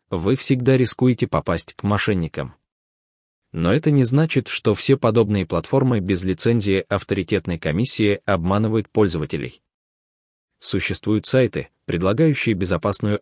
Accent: native